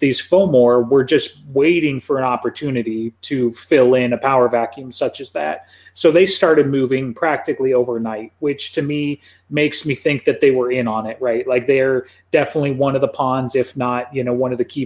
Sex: male